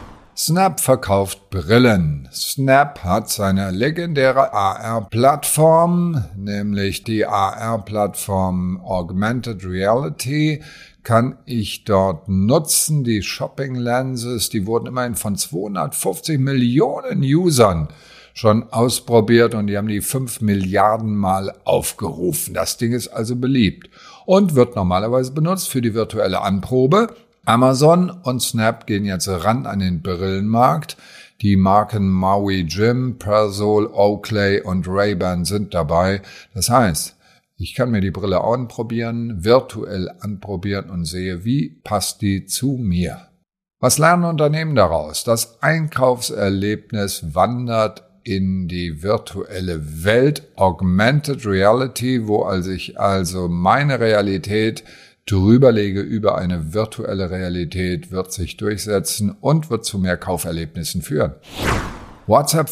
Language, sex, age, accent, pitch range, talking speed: German, male, 50-69, German, 95-130 Hz, 115 wpm